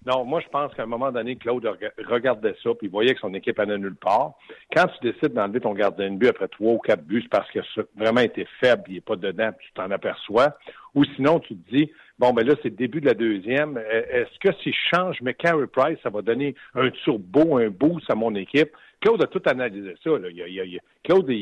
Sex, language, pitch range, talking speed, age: male, French, 115-165 Hz, 260 wpm, 60-79